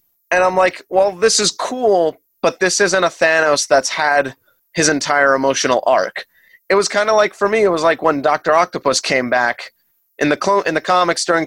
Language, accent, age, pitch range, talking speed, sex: English, American, 30-49, 135-185 Hz, 210 wpm, male